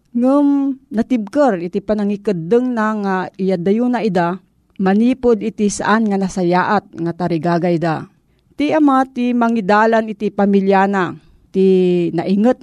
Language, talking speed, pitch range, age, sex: Filipino, 115 wpm, 185-245 Hz, 40-59, female